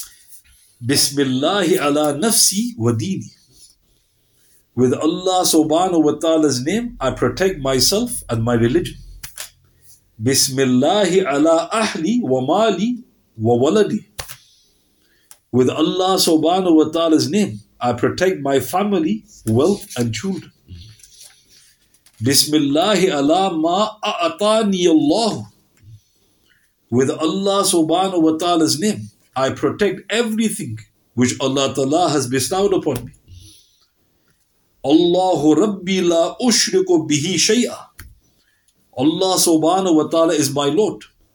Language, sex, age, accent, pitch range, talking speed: English, male, 50-69, Indian, 120-185 Hz, 100 wpm